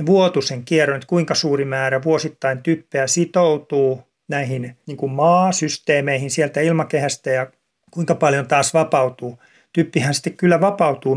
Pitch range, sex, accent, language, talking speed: 135-165 Hz, male, native, Finnish, 125 wpm